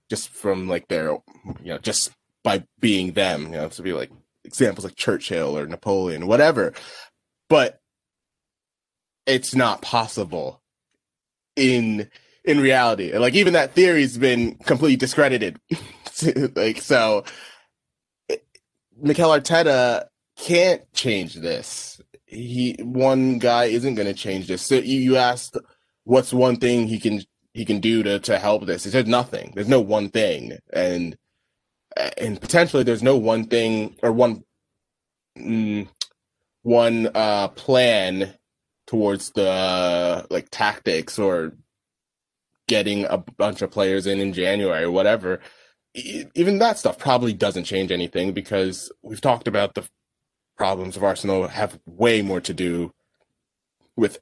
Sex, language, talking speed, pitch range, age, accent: male, English, 140 wpm, 100-130 Hz, 20-39, American